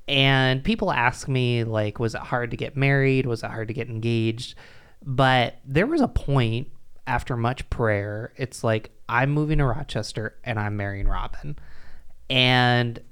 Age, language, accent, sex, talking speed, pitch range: 20-39, English, American, male, 165 wpm, 105-135 Hz